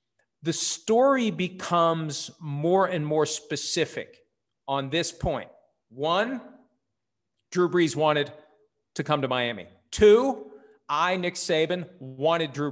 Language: English